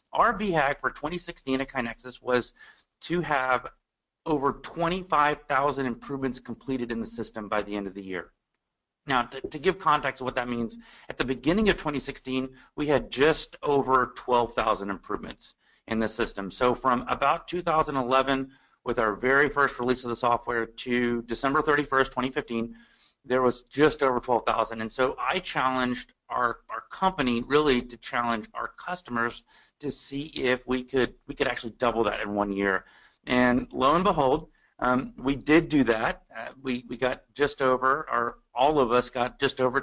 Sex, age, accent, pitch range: male, 30-49, American, 115-140 Hz